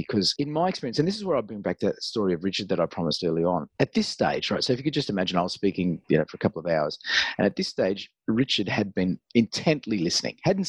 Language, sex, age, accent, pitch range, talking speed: English, male, 30-49, Australian, 100-165 Hz, 285 wpm